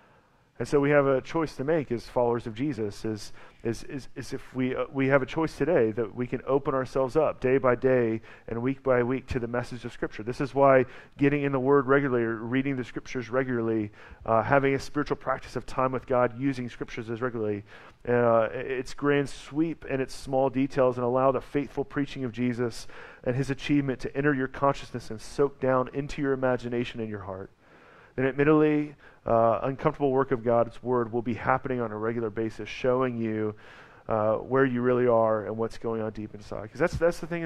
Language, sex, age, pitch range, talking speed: English, male, 40-59, 115-135 Hz, 210 wpm